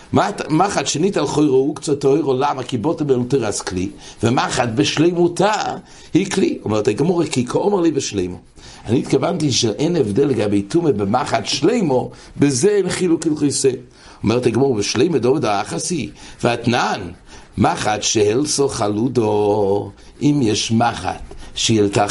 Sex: male